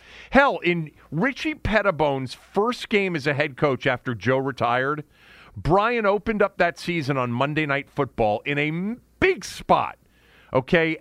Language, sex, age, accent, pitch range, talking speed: English, male, 40-59, American, 120-185 Hz, 155 wpm